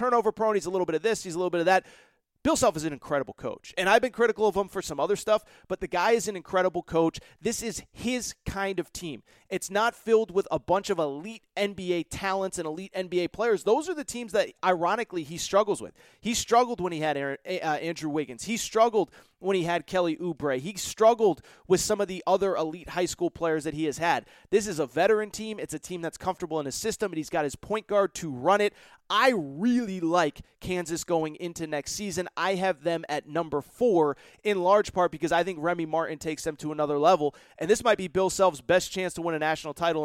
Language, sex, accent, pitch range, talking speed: English, male, American, 160-205 Hz, 235 wpm